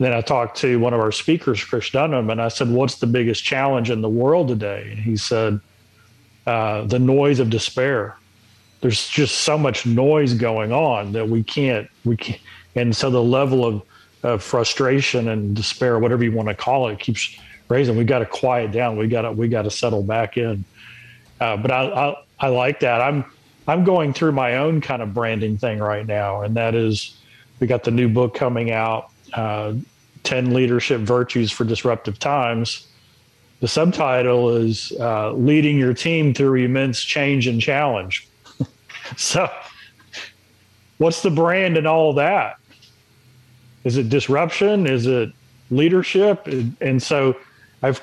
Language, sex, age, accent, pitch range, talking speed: English, male, 40-59, American, 115-135 Hz, 170 wpm